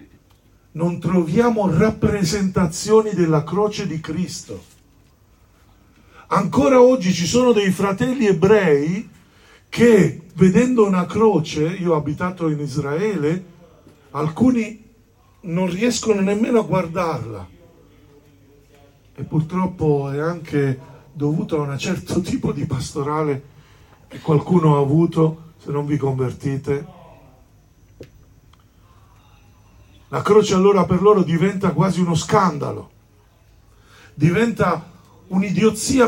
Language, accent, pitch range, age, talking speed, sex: Italian, native, 125-185 Hz, 50-69, 100 wpm, male